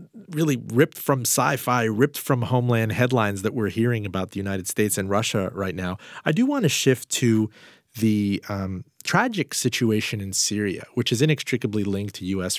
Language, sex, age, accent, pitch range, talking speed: English, male, 40-59, American, 95-120 Hz, 175 wpm